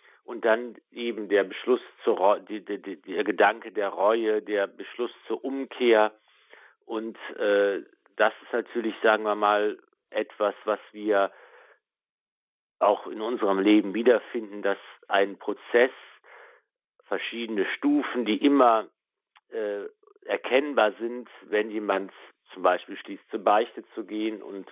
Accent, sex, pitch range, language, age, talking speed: German, male, 105-135 Hz, German, 50-69, 130 wpm